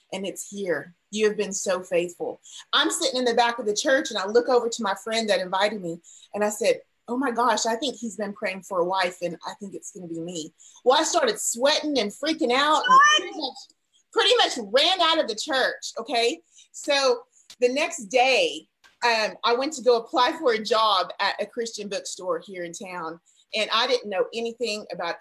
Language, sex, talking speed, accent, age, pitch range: English, female, 215 wpm, American, 30-49, 200-265 Hz